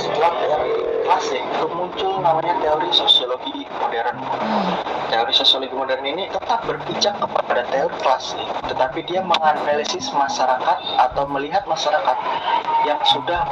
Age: 20-39